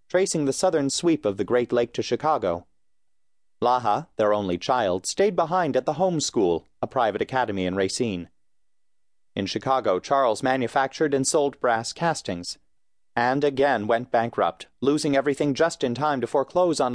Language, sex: English, male